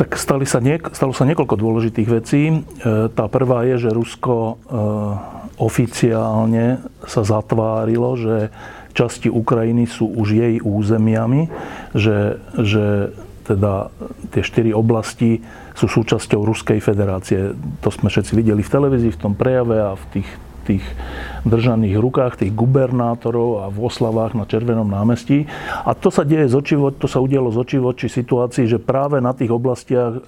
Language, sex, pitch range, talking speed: Slovak, male, 110-125 Hz, 145 wpm